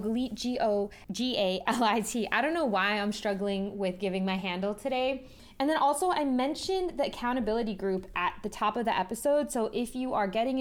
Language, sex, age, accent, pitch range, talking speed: English, female, 20-39, American, 205-265 Hz, 175 wpm